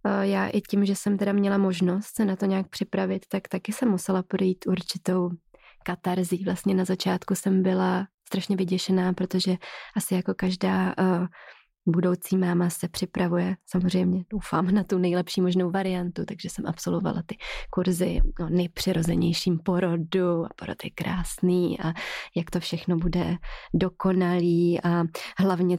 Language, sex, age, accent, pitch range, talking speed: Czech, female, 20-39, native, 180-205 Hz, 145 wpm